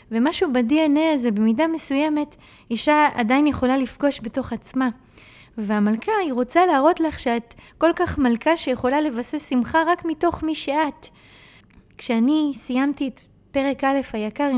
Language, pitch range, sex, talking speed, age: Hebrew, 225-275 Hz, female, 135 wpm, 20-39